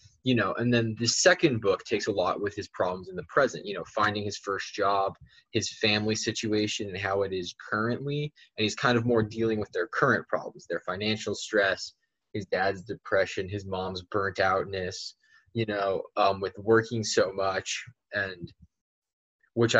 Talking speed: 180 wpm